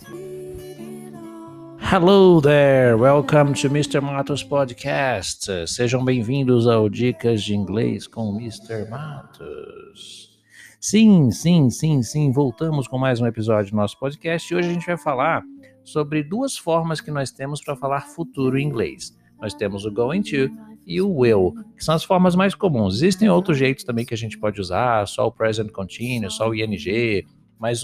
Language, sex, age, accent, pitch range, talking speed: English, male, 60-79, Brazilian, 120-175 Hz, 165 wpm